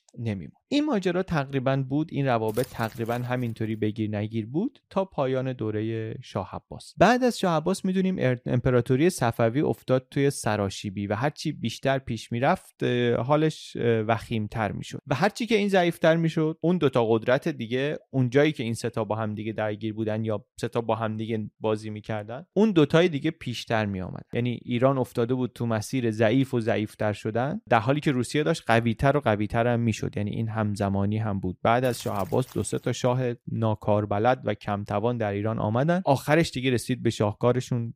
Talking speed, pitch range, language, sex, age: 175 wpm, 110-135 Hz, Persian, male, 30-49